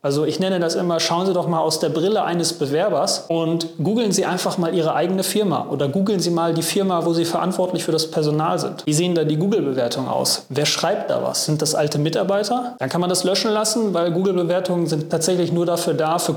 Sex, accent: male, German